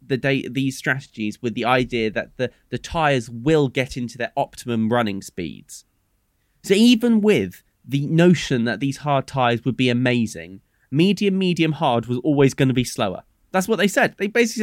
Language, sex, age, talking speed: English, male, 20-39, 185 wpm